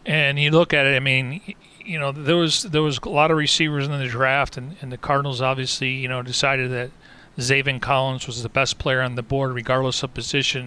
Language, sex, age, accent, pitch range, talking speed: English, male, 40-59, American, 125-145 Hz, 230 wpm